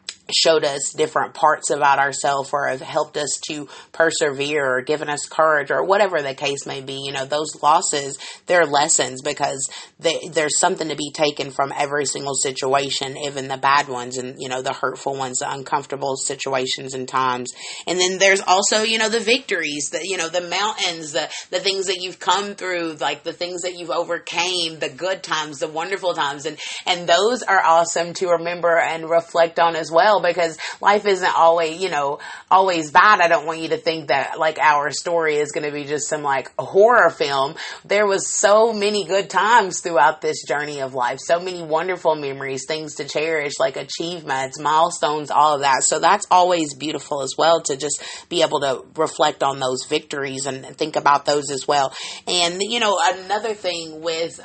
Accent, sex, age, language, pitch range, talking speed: American, female, 30-49, English, 140-170 Hz, 195 wpm